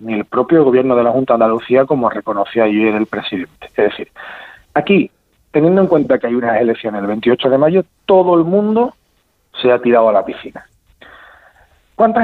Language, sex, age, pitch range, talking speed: Spanish, male, 40-59, 115-180 Hz, 185 wpm